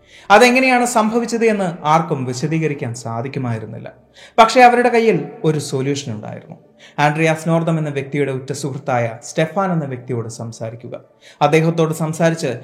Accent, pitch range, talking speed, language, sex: native, 125-165 Hz, 110 wpm, Malayalam, male